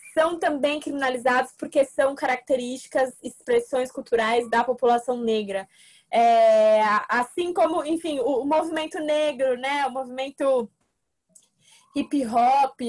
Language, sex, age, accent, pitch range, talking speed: Portuguese, female, 20-39, Brazilian, 230-285 Hz, 100 wpm